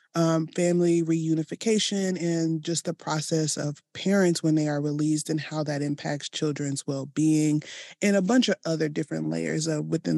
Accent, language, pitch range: American, English, 155-190 Hz